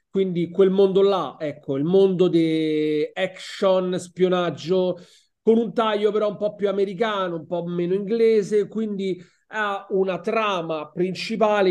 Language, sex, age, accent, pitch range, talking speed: Italian, male, 40-59, native, 165-210 Hz, 140 wpm